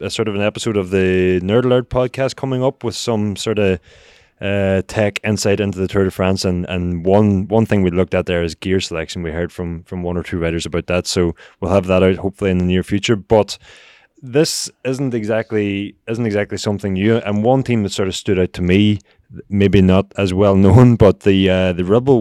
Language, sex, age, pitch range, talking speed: English, male, 20-39, 90-105 Hz, 225 wpm